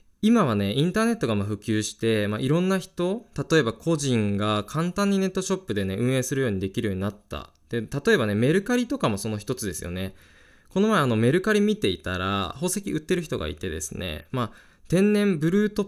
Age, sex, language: 20-39, male, Japanese